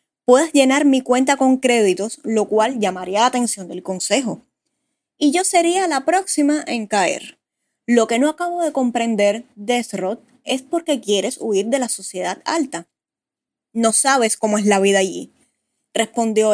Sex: female